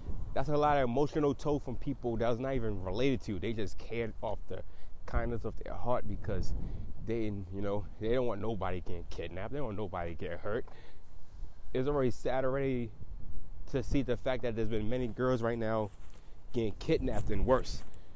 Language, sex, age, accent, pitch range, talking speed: English, male, 20-39, American, 95-140 Hz, 190 wpm